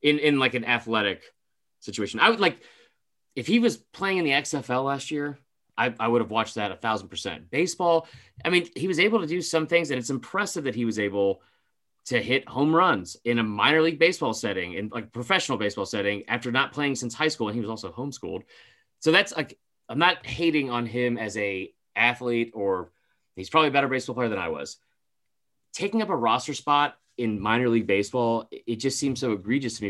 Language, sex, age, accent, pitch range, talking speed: English, male, 30-49, American, 110-150 Hz, 215 wpm